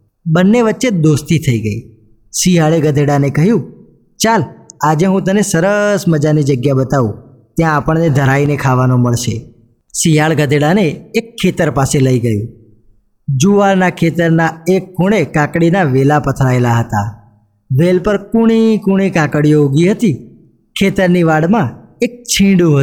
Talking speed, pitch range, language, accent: 120 wpm, 135-185 Hz, Gujarati, native